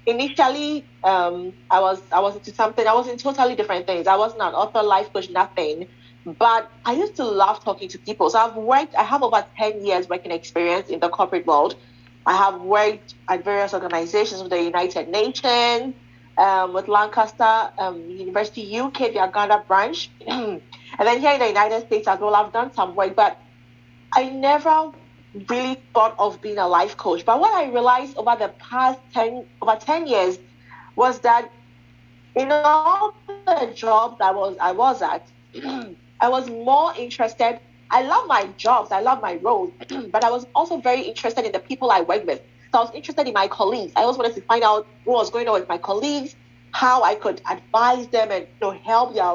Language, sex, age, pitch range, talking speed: English, female, 30-49, 185-245 Hz, 195 wpm